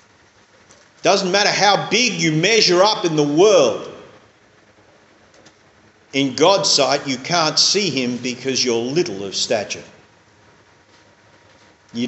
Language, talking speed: English, 115 wpm